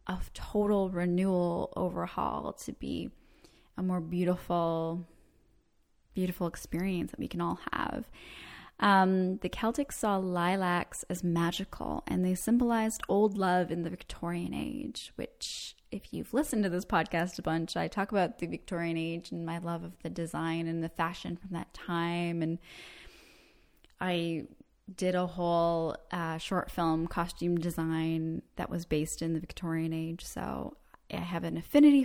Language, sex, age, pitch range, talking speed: English, female, 10-29, 165-190 Hz, 150 wpm